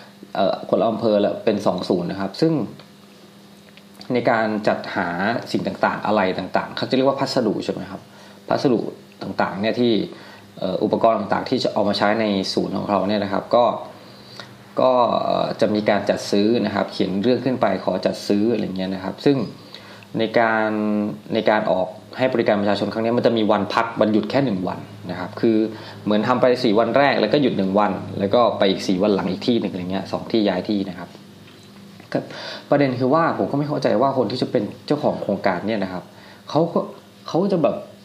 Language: Thai